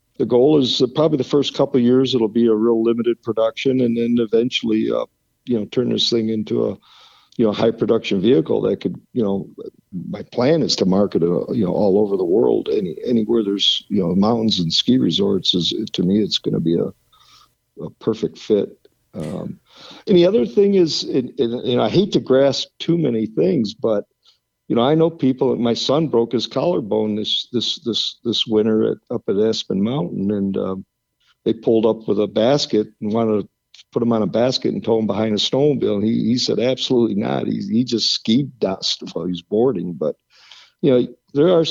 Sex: male